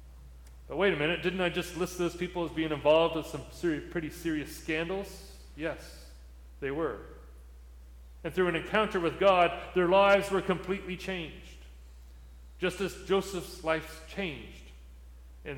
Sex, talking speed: male, 145 wpm